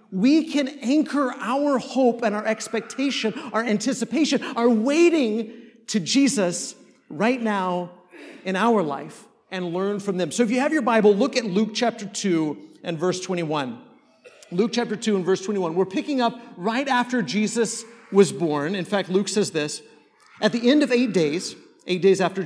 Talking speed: 175 wpm